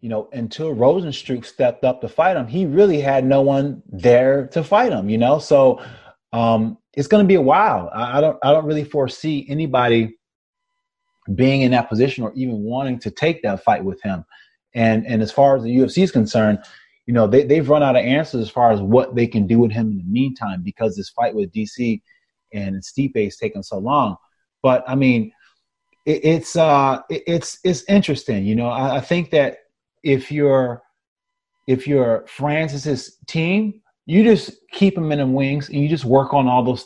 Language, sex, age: English, male, 30-49